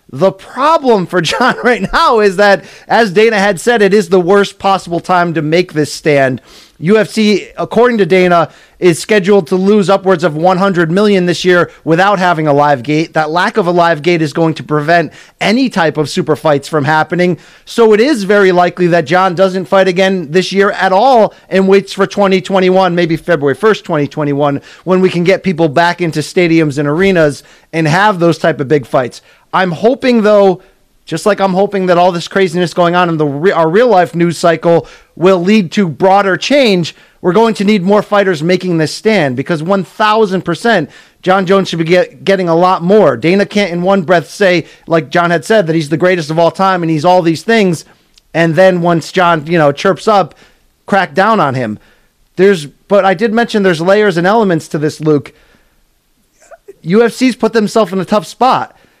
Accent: American